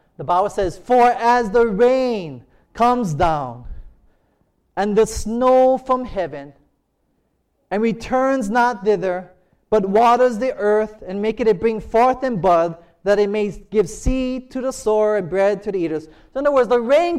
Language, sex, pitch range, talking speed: English, male, 200-275 Hz, 170 wpm